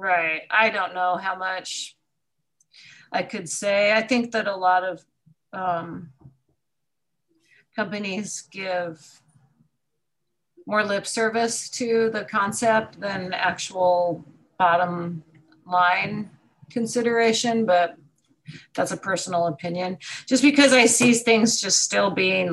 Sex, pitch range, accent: female, 170-220 Hz, American